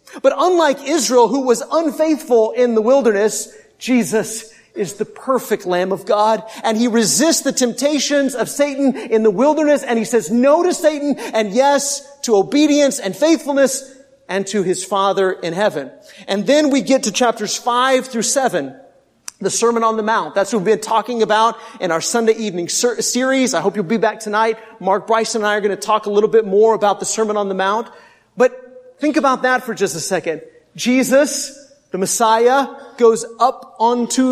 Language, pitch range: English, 210-275 Hz